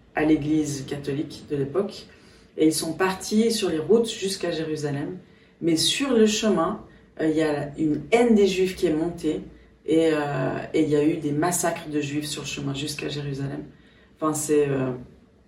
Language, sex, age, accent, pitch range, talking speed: French, female, 40-59, French, 150-190 Hz, 180 wpm